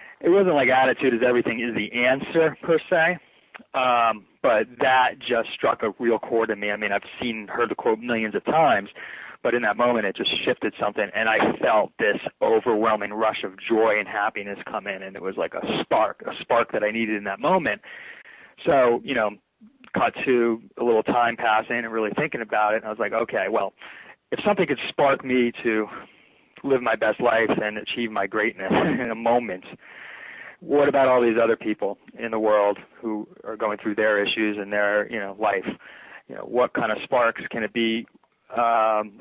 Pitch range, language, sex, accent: 105-125 Hz, English, male, American